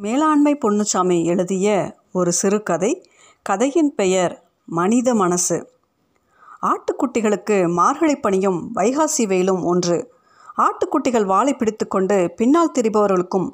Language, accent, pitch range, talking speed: Tamil, native, 195-280 Hz, 100 wpm